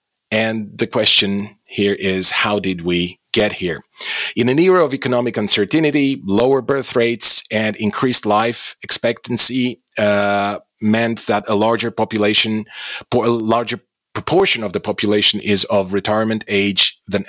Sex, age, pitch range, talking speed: male, 40-59, 100-125 Hz, 140 wpm